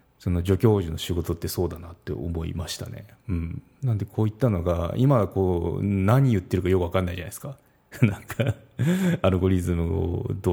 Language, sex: Japanese, male